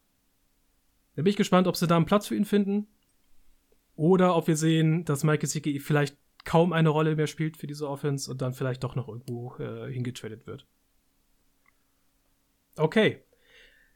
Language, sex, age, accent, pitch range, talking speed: German, male, 30-49, German, 135-170 Hz, 165 wpm